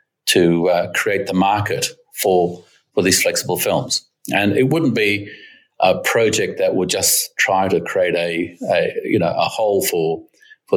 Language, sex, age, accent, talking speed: English, male, 40-59, Australian, 165 wpm